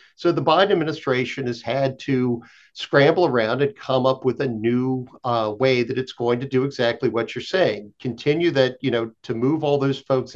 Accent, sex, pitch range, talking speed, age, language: American, male, 115-140 Hz, 205 wpm, 50-69, English